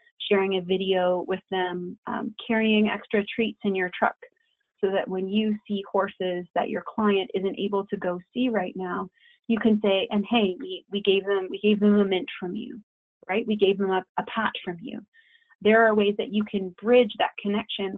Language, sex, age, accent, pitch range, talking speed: English, female, 30-49, American, 195-235 Hz, 195 wpm